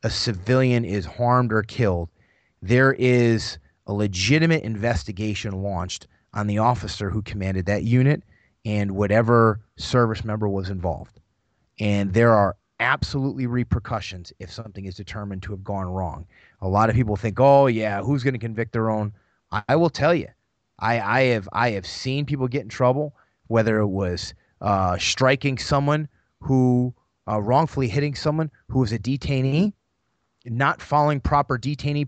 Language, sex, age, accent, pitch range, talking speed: English, male, 30-49, American, 105-135 Hz, 160 wpm